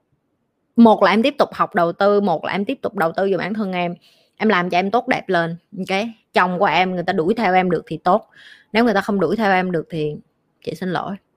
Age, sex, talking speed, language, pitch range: 20-39, female, 265 wpm, Vietnamese, 175-215 Hz